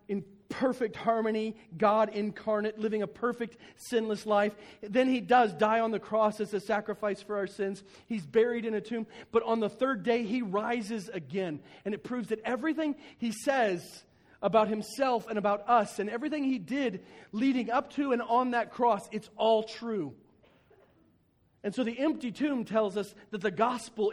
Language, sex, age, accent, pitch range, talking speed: English, male, 40-59, American, 145-220 Hz, 180 wpm